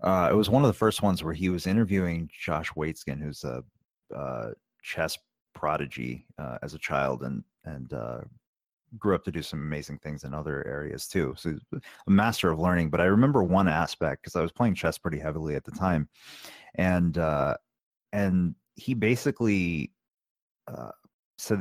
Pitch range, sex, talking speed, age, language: 80-100 Hz, male, 180 wpm, 30-49, English